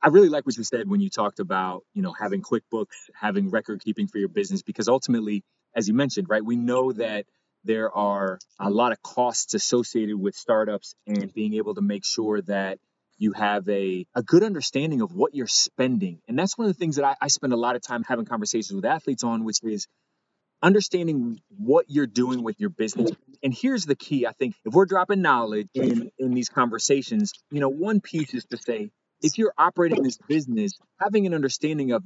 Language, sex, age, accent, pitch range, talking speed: English, male, 30-49, American, 115-160 Hz, 210 wpm